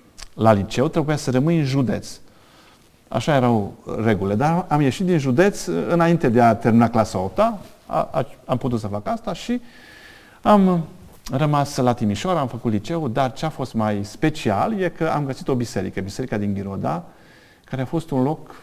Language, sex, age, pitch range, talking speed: Romanian, male, 40-59, 105-140 Hz, 180 wpm